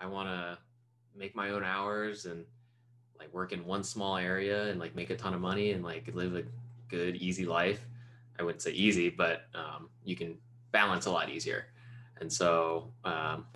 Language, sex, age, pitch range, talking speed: English, male, 20-39, 85-120 Hz, 190 wpm